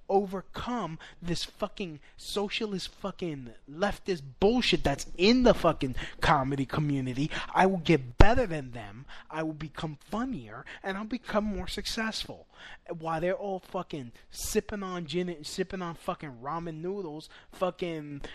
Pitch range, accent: 145-190 Hz, American